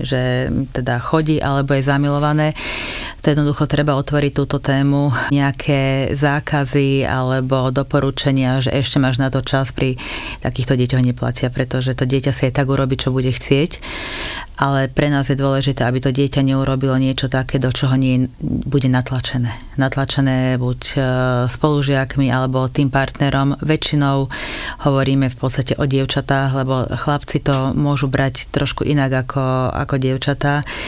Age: 30-49